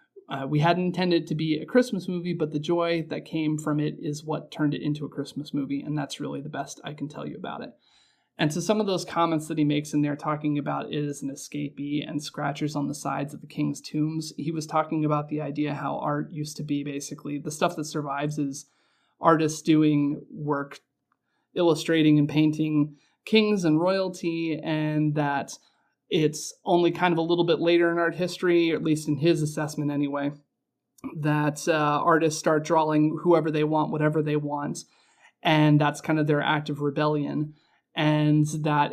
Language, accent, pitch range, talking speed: English, American, 145-165 Hz, 200 wpm